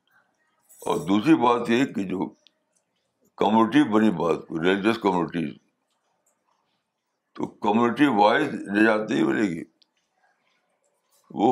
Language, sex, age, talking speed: Urdu, male, 60-79, 100 wpm